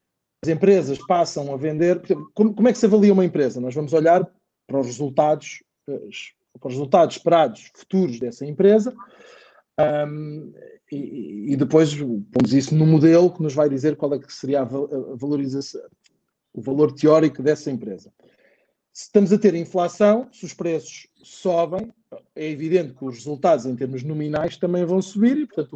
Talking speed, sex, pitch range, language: 160 wpm, male, 150-205 Hz, Portuguese